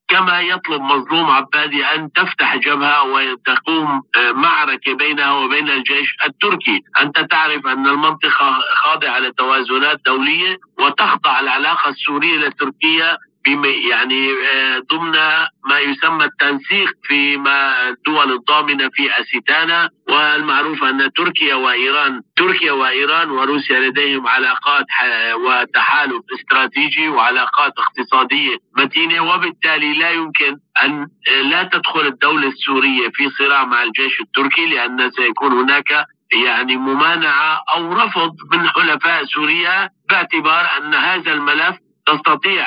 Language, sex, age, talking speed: Arabic, male, 50-69, 110 wpm